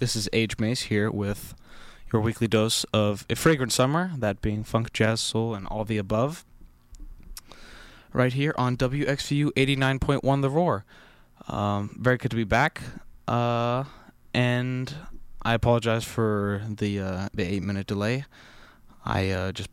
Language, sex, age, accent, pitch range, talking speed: English, male, 20-39, American, 100-125 Hz, 160 wpm